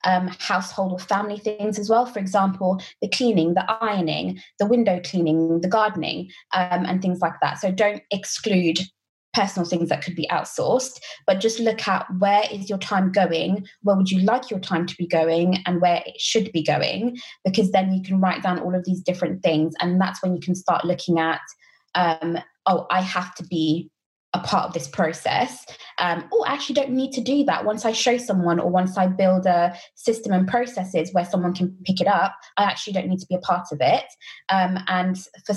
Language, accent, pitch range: English, British, 180-215 Hz